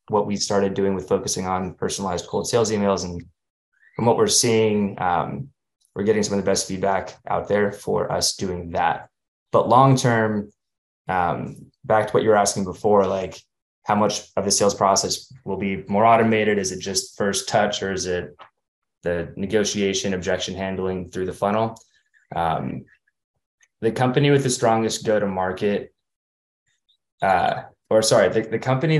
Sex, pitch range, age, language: male, 95-110 Hz, 20-39, English